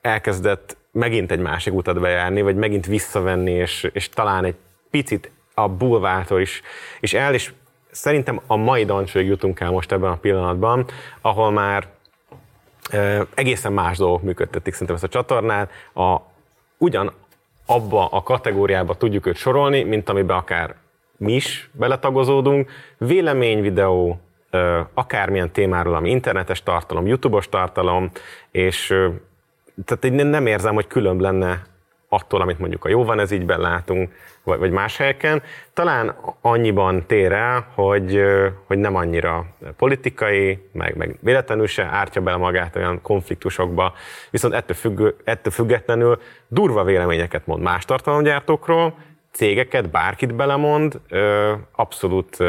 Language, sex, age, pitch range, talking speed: Hungarian, male, 30-49, 90-120 Hz, 135 wpm